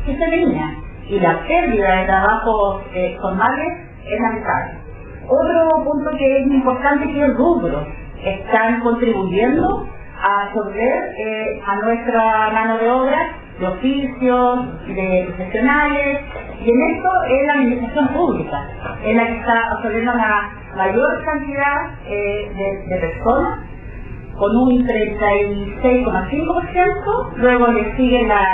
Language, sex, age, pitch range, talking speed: Spanish, female, 40-59, 215-275 Hz, 125 wpm